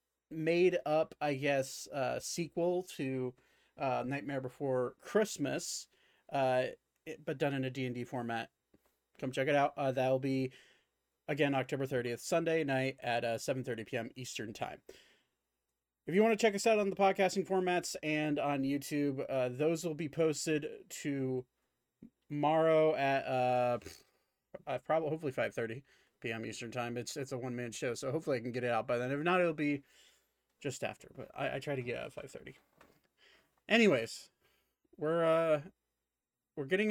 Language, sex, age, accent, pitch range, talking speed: English, male, 30-49, American, 125-160 Hz, 170 wpm